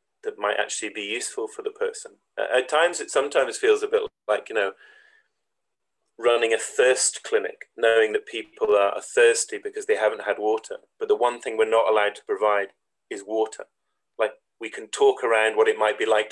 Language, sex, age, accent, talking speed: English, male, 30-49, British, 200 wpm